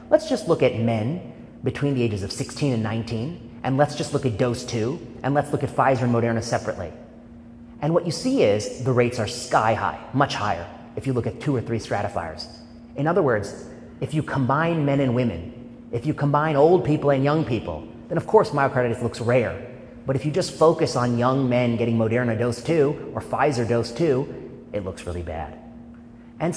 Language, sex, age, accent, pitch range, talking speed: English, male, 30-49, American, 115-140 Hz, 205 wpm